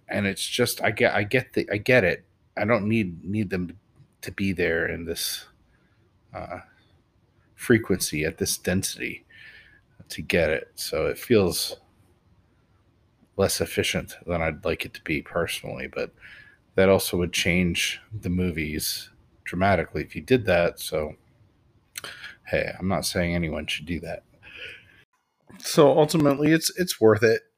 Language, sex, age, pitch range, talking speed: English, male, 40-59, 90-120 Hz, 150 wpm